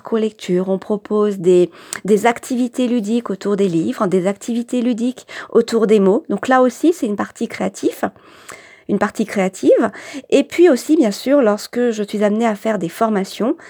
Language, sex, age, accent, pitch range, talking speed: French, female, 40-59, French, 195-260 Hz, 165 wpm